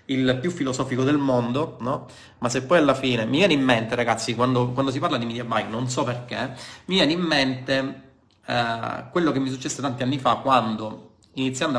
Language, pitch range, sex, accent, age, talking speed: Italian, 120-150 Hz, male, native, 30-49, 205 wpm